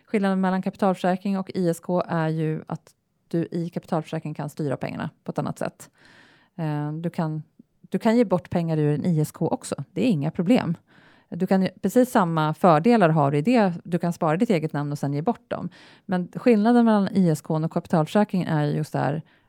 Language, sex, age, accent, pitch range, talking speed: Swedish, female, 30-49, Norwegian, 155-195 Hz, 190 wpm